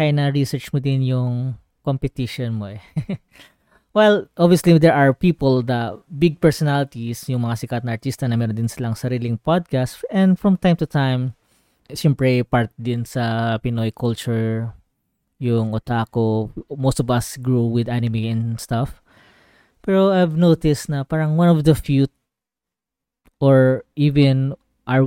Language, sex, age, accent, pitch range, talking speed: Filipino, female, 20-39, native, 115-145 Hz, 140 wpm